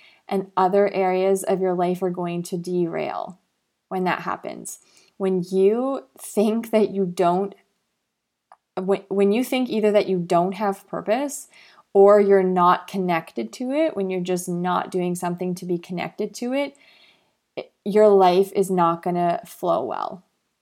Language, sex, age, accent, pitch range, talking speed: English, female, 20-39, American, 175-195 Hz, 150 wpm